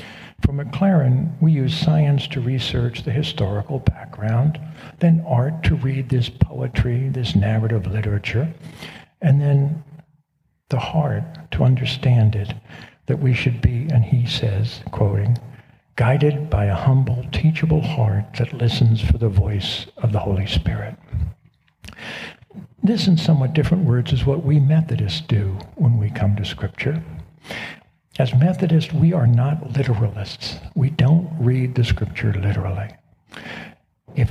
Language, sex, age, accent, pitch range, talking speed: English, male, 60-79, American, 110-150 Hz, 135 wpm